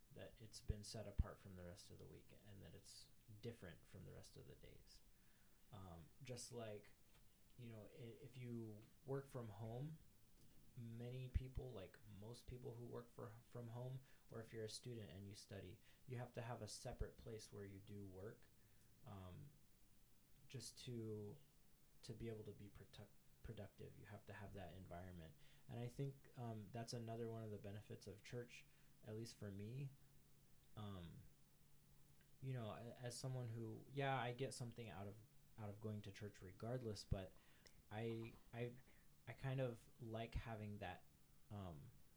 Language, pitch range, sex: English, 100-120 Hz, male